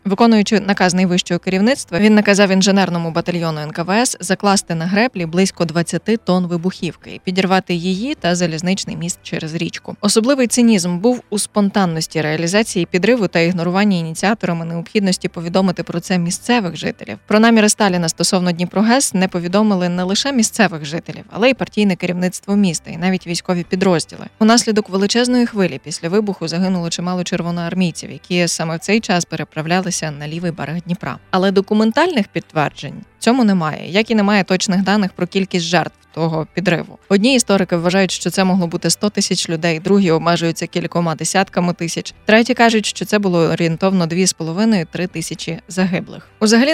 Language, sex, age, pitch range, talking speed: Ukrainian, female, 20-39, 170-205 Hz, 150 wpm